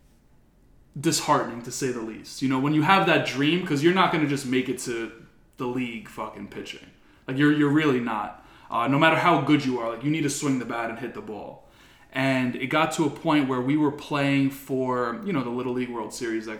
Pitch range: 115-140 Hz